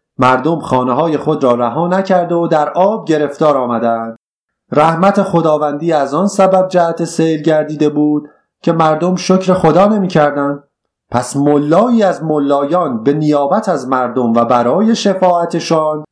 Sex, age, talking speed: male, 30-49, 140 wpm